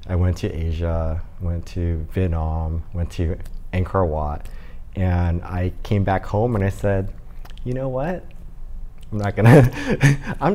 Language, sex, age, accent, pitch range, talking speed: English, male, 30-49, American, 85-105 Hz, 150 wpm